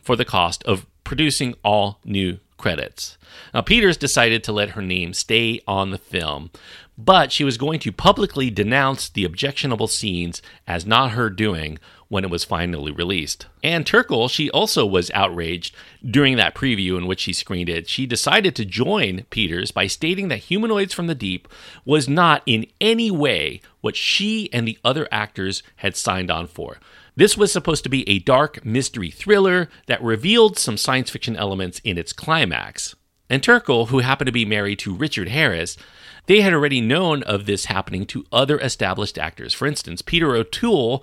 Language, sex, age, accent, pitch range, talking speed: English, male, 40-59, American, 95-140 Hz, 180 wpm